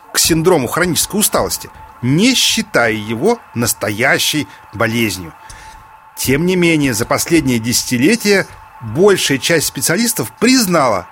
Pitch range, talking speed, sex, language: 140-200 Hz, 105 wpm, male, Russian